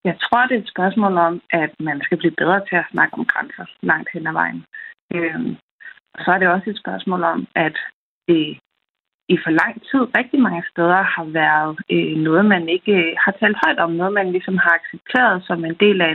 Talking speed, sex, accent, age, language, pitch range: 210 wpm, female, native, 30-49, Danish, 170-215 Hz